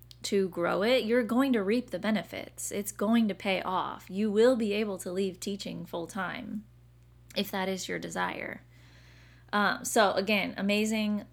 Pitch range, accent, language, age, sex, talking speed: 170-215 Hz, American, English, 20-39, female, 165 wpm